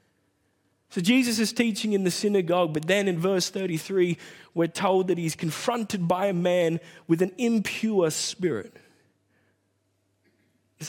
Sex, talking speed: male, 140 wpm